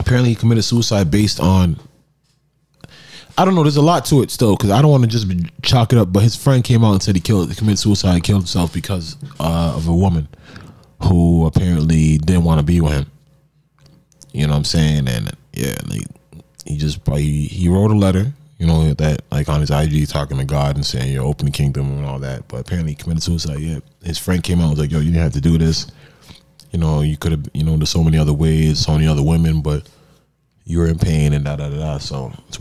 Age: 20-39